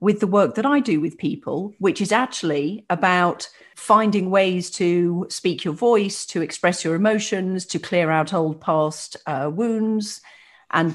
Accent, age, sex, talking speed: British, 40-59, female, 165 wpm